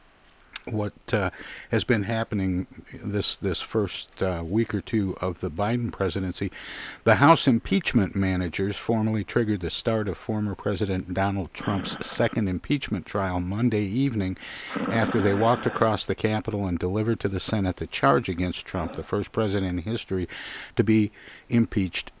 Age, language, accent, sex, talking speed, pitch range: 50-69, English, American, male, 155 wpm, 95-115 Hz